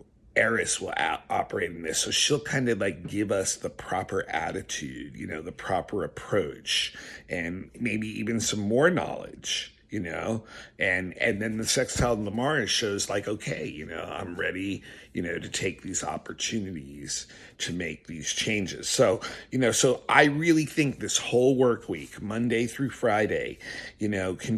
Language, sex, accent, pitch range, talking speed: English, male, American, 100-120 Hz, 170 wpm